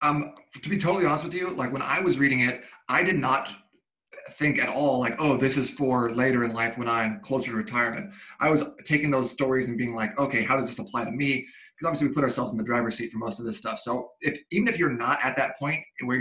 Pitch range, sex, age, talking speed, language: 125-150 Hz, male, 30-49, 265 wpm, English